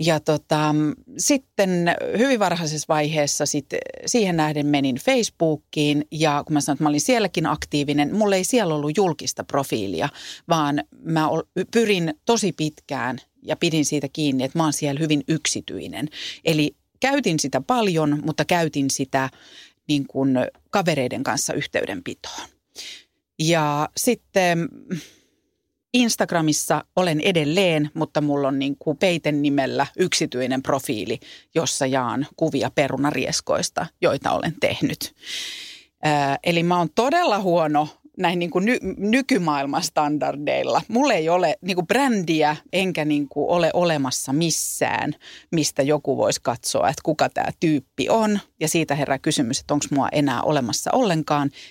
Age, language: 40-59, Finnish